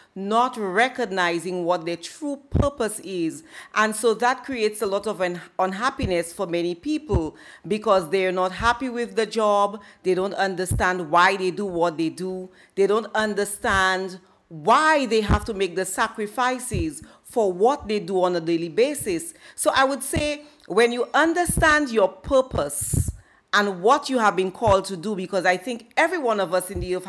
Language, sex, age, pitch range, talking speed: English, female, 40-59, 185-245 Hz, 175 wpm